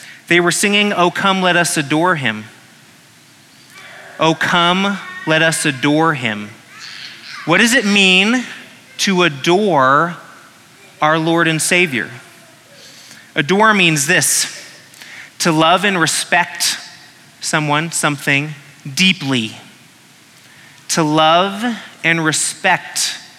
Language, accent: English, American